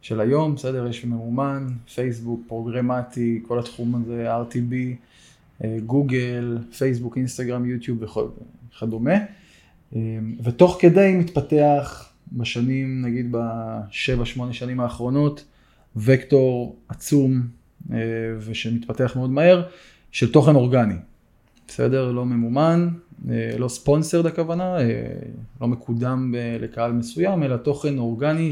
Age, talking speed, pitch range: 20-39, 100 wpm, 115-145 Hz